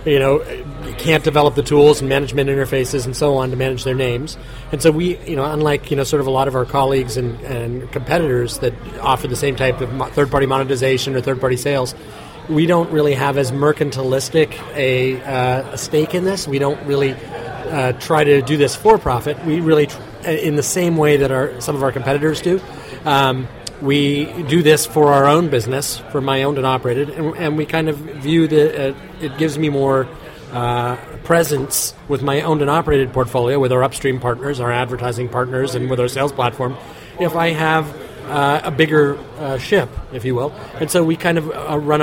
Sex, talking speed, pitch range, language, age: male, 205 wpm, 130-155 Hz, English, 30-49